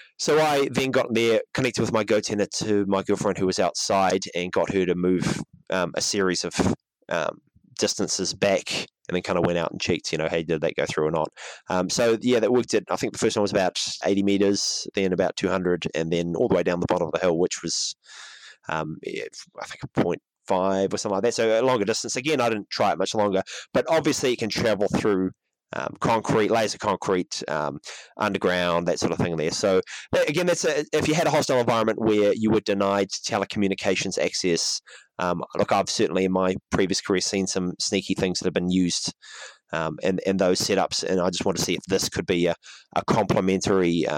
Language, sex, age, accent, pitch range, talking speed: English, male, 20-39, Australian, 90-115 Hz, 220 wpm